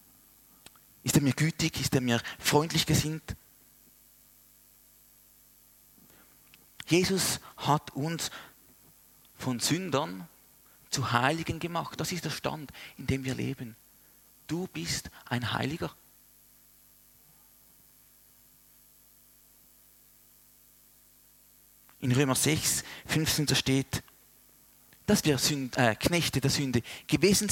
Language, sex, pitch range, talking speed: German, male, 120-150 Hz, 90 wpm